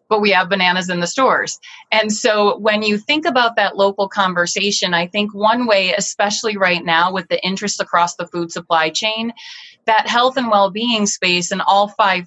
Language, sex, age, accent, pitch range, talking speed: English, female, 30-49, American, 180-220 Hz, 190 wpm